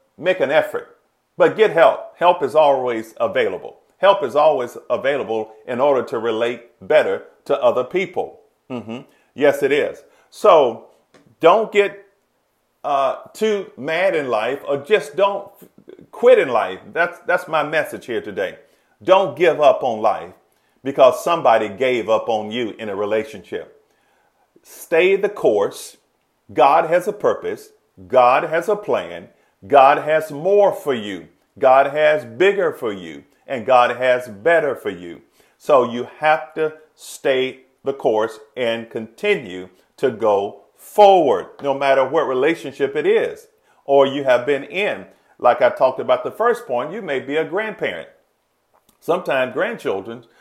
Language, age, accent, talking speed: English, 40-59, American, 150 wpm